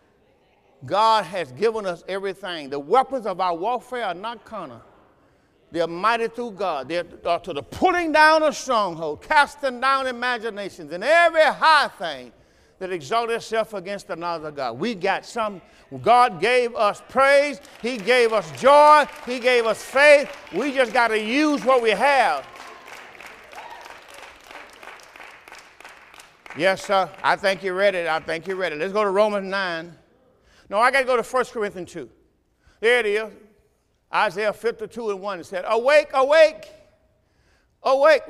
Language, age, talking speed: English, 50-69, 155 wpm